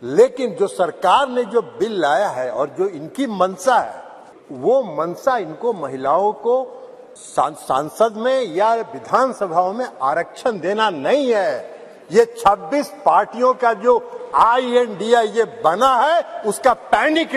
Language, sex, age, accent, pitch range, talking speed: Hindi, male, 50-69, native, 245-305 Hz, 140 wpm